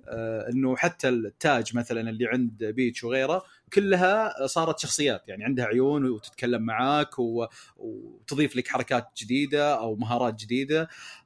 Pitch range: 120-155 Hz